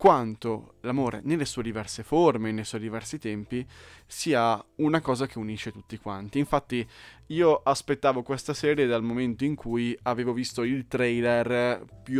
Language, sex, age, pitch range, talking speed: Italian, male, 20-39, 110-135 Hz, 150 wpm